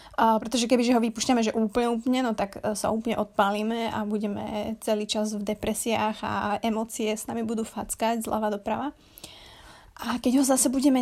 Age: 20-39